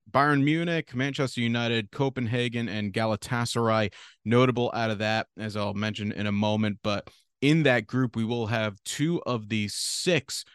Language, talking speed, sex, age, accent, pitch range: English, 160 wpm, male, 30-49, American, 105-130 Hz